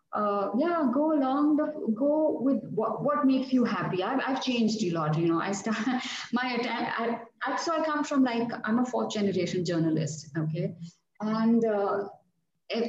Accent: Indian